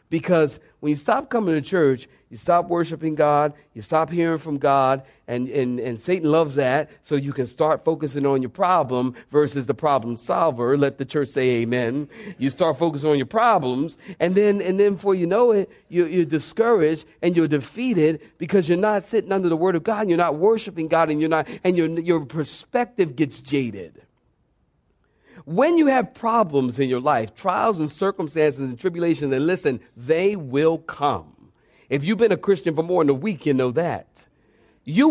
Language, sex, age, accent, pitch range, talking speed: English, male, 50-69, American, 145-205 Hz, 195 wpm